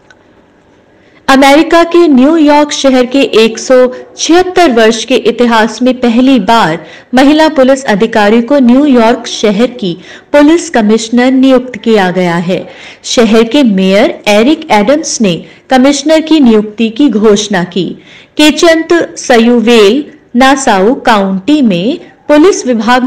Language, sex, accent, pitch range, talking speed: Hindi, female, native, 215-275 Hz, 115 wpm